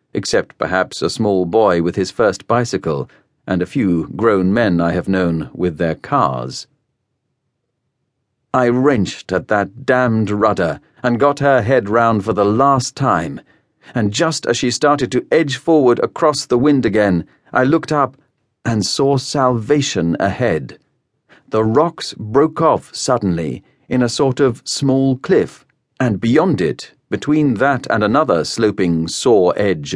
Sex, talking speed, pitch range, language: male, 150 wpm, 110-135 Hz, English